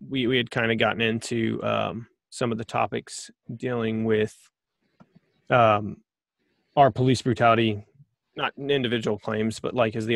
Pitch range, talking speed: 110-140 Hz, 150 wpm